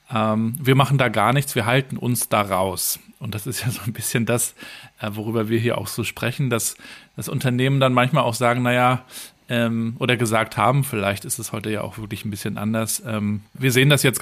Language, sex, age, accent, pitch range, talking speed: German, male, 40-59, German, 115-135 Hz, 205 wpm